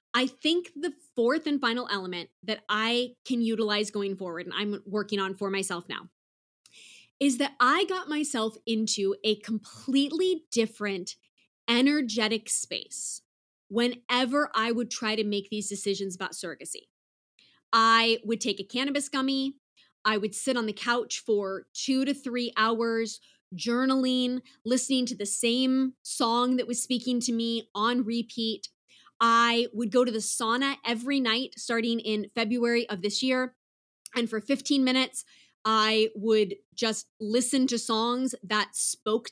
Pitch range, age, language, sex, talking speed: 215-265 Hz, 20-39, English, female, 150 wpm